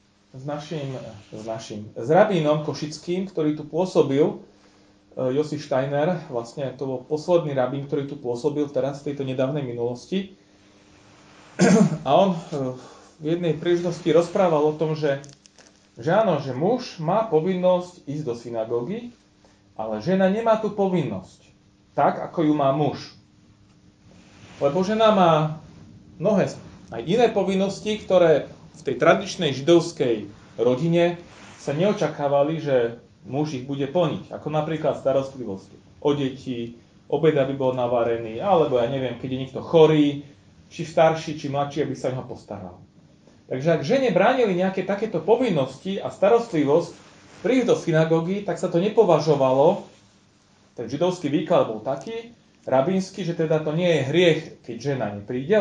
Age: 30-49